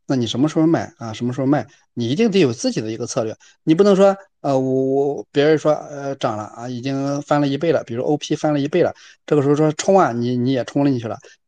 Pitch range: 125-150 Hz